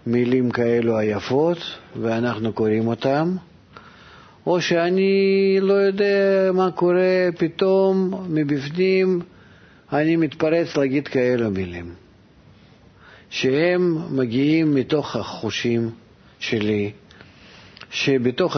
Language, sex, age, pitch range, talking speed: Hebrew, male, 50-69, 115-150 Hz, 80 wpm